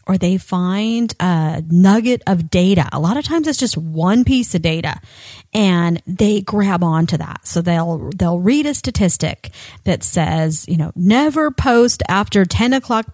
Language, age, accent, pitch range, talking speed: English, 40-59, American, 165-225 Hz, 170 wpm